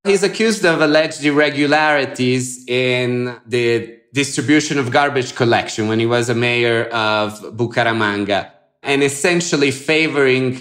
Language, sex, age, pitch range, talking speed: English, male, 30-49, 115-140 Hz, 120 wpm